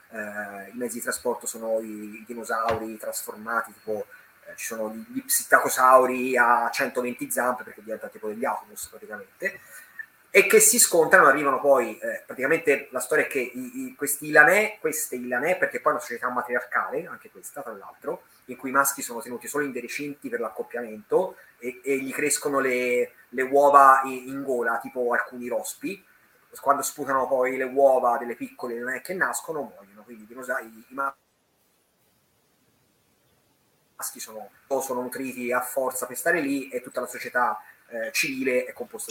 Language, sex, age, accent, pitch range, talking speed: Italian, male, 30-49, native, 120-150 Hz, 170 wpm